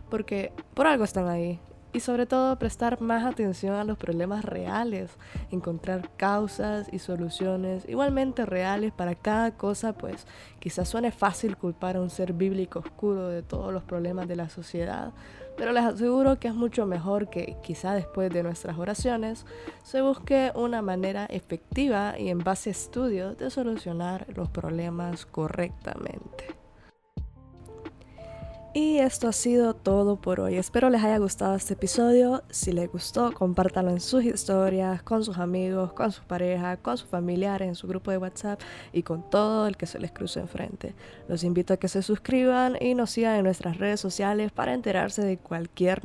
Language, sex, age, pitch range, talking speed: Spanish, female, 20-39, 180-225 Hz, 170 wpm